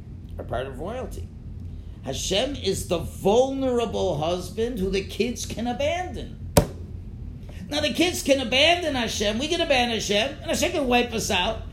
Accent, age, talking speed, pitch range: American, 50-69, 155 wpm, 180-285 Hz